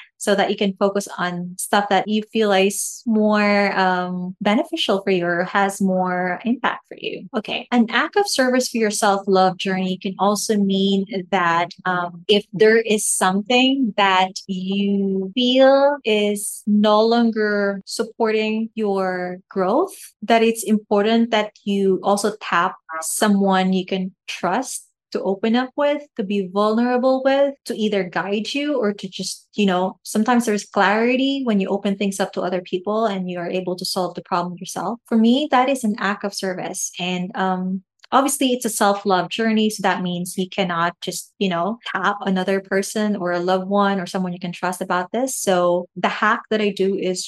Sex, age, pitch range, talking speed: female, 20-39, 190-225 Hz, 180 wpm